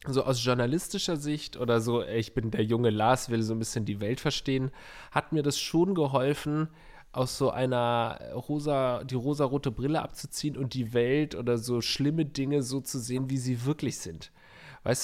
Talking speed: 185 wpm